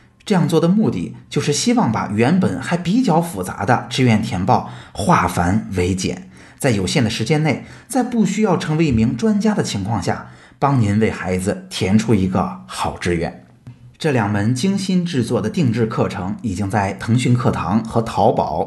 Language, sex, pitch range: Chinese, male, 95-135 Hz